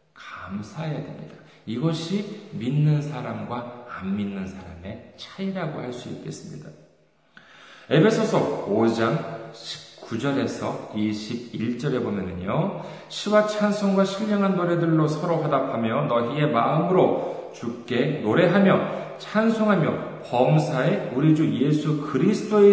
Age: 40-59